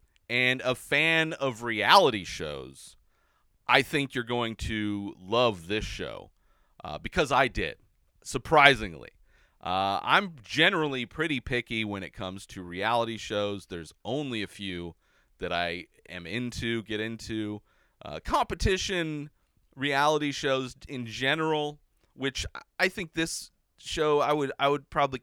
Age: 30-49